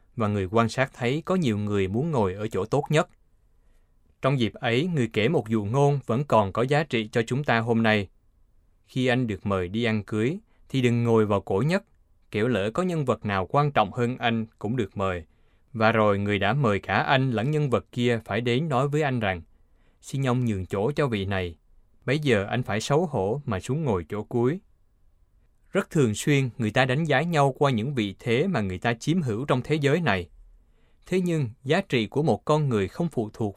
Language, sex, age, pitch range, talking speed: Vietnamese, male, 20-39, 100-135 Hz, 225 wpm